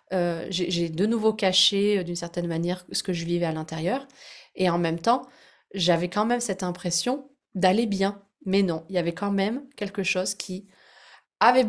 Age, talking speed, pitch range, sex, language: 30-49, 190 wpm, 180-225 Hz, female, French